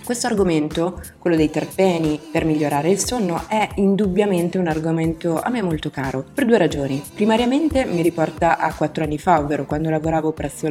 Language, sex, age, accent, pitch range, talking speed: Italian, female, 20-39, native, 150-180 Hz, 175 wpm